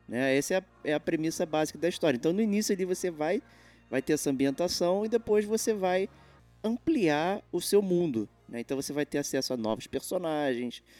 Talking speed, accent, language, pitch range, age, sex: 195 wpm, Brazilian, Portuguese, 120-185 Hz, 20-39, male